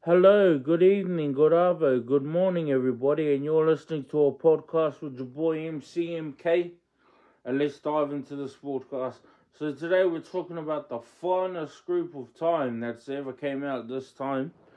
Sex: male